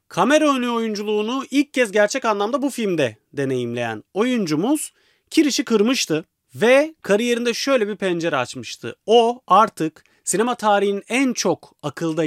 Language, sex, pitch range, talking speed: Turkish, male, 150-235 Hz, 125 wpm